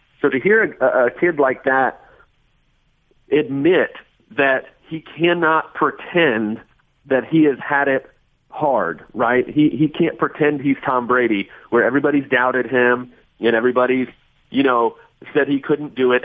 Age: 40-59